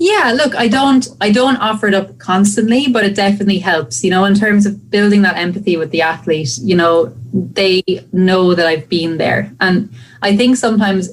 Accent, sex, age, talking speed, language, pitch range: Irish, female, 30-49, 200 wpm, English, 160-195 Hz